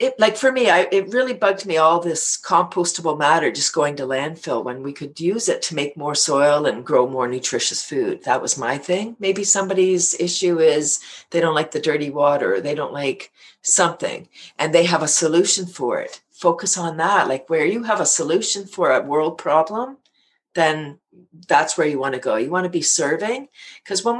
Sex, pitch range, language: female, 145-180 Hz, English